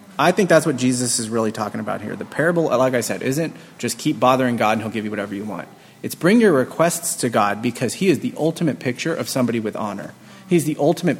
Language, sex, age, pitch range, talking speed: English, male, 30-49, 125-160 Hz, 245 wpm